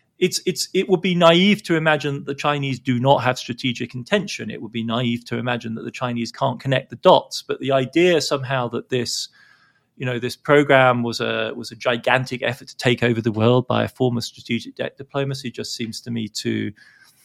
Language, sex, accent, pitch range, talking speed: English, male, British, 120-140 Hz, 215 wpm